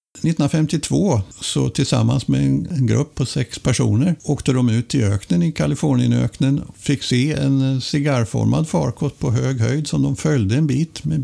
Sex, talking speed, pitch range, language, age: male, 165 wpm, 115-145 Hz, Swedish, 60-79